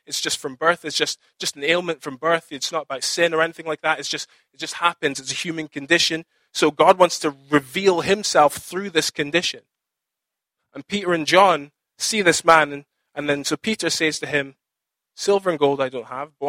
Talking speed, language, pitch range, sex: 215 wpm, English, 150-195 Hz, male